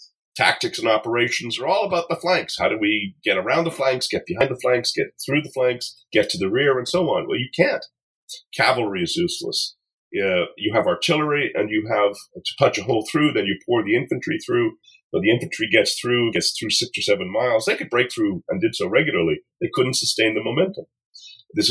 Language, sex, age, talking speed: English, male, 40-59, 220 wpm